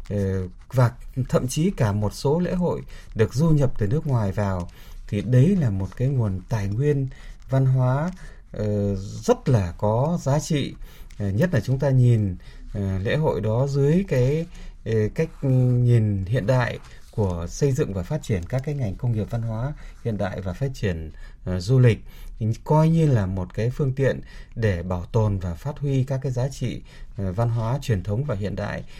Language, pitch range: Vietnamese, 105-140 Hz